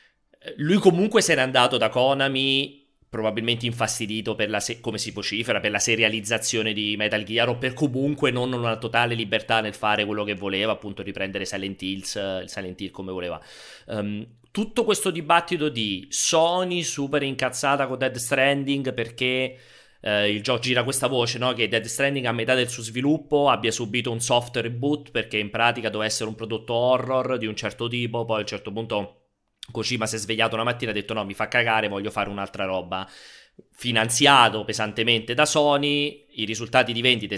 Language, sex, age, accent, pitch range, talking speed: Italian, male, 30-49, native, 105-130 Hz, 185 wpm